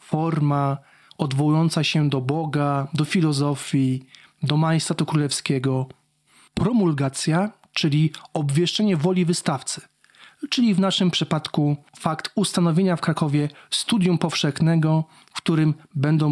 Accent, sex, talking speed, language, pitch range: native, male, 105 wpm, Polish, 145-180 Hz